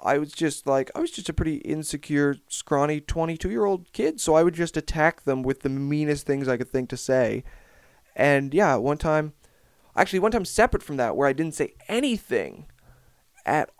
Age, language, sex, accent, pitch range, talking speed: 20-39, English, male, American, 145-180 Hz, 190 wpm